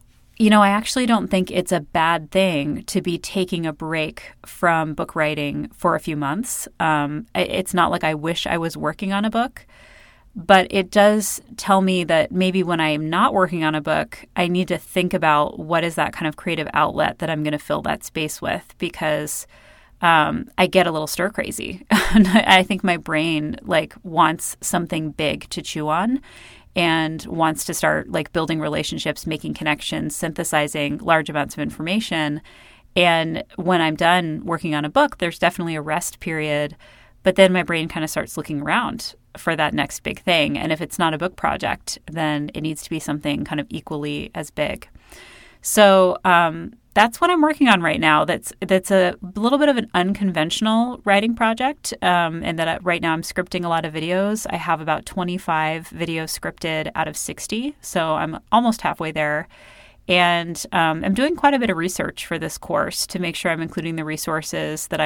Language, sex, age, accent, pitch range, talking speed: English, female, 30-49, American, 155-190 Hz, 195 wpm